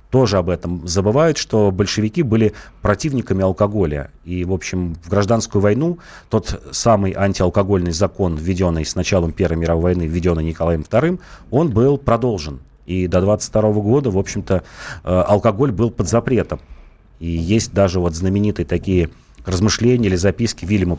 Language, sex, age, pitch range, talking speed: Russian, male, 30-49, 85-105 Hz, 145 wpm